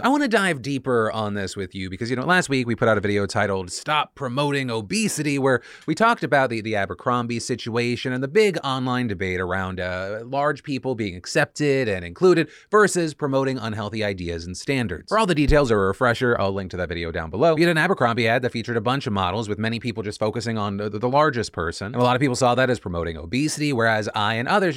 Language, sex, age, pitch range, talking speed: English, male, 30-49, 105-150 Hz, 240 wpm